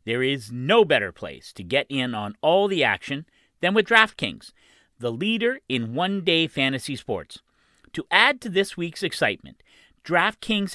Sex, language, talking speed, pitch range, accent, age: male, English, 155 wpm, 130-190 Hz, American, 40-59